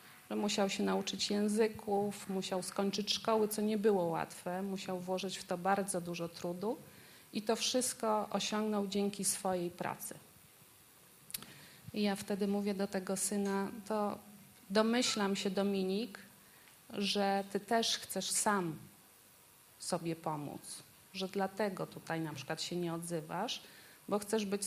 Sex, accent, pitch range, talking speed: female, native, 185-210 Hz, 130 wpm